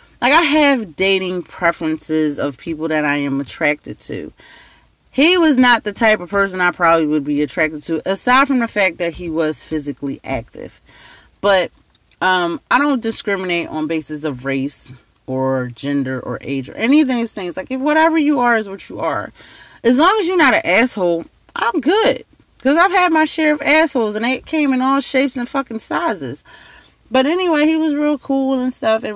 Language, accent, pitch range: English, American, 165-270 Hz